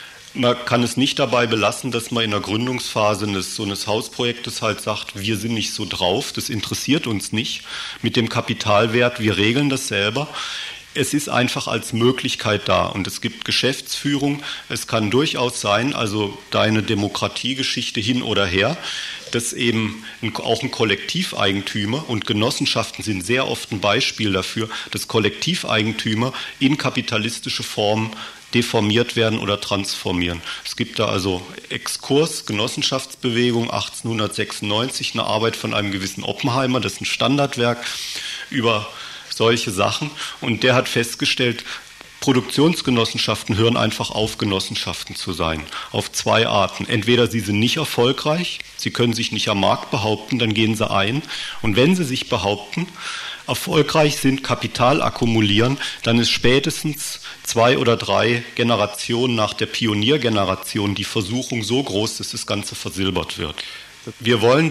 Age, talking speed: 40-59, 145 wpm